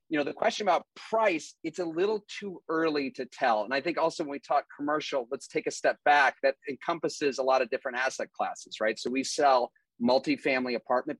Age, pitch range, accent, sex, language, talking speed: 30-49, 125-150 Hz, American, male, English, 215 wpm